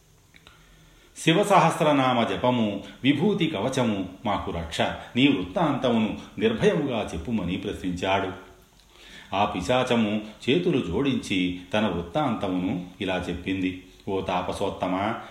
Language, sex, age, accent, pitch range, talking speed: Telugu, male, 40-59, native, 95-130 Hz, 80 wpm